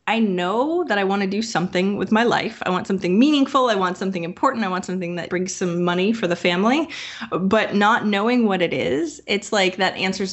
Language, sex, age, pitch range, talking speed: English, female, 20-39, 175-230 Hz, 225 wpm